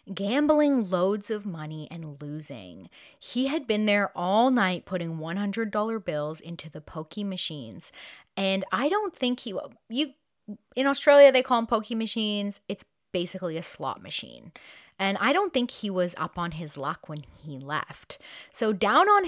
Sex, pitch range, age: female, 160-250 Hz, 30-49